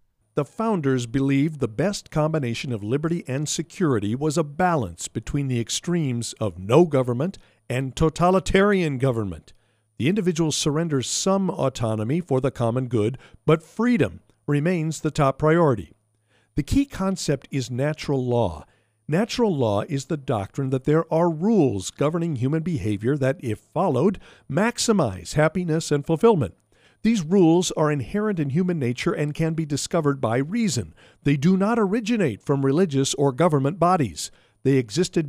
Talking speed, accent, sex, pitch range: 145 wpm, American, male, 125-175 Hz